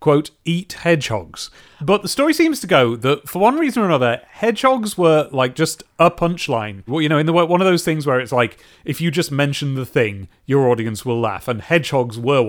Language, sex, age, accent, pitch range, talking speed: English, male, 30-49, British, 125-170 Hz, 220 wpm